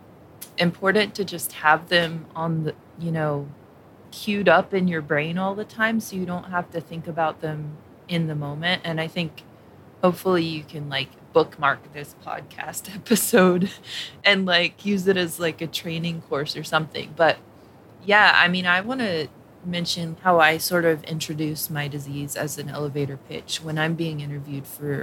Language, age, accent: English, 20-39, American